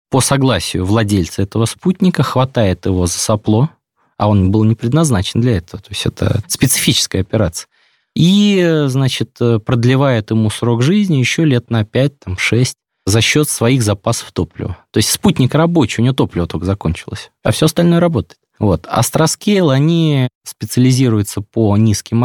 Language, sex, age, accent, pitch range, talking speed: Russian, male, 20-39, native, 105-135 Hz, 145 wpm